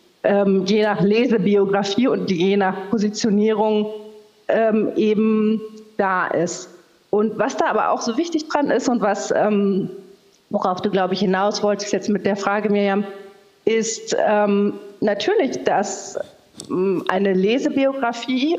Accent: German